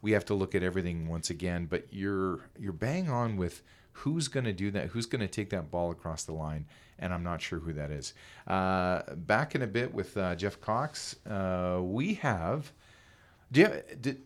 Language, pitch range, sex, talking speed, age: English, 85-115 Hz, male, 200 wpm, 40-59